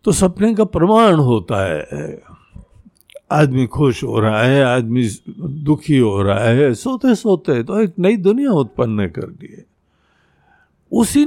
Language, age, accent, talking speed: Hindi, 60-79, native, 145 wpm